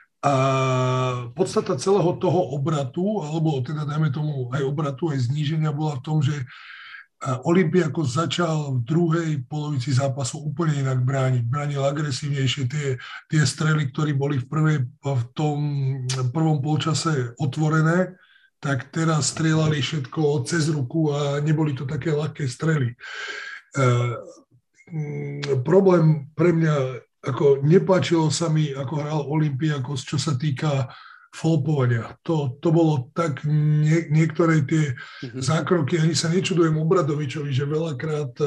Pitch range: 140-160 Hz